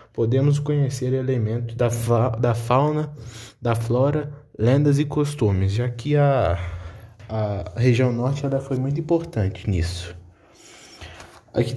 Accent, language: Brazilian, Portuguese